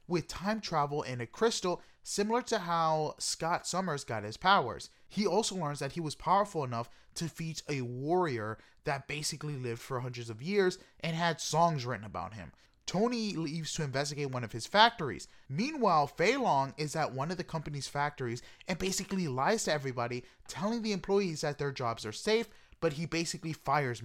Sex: male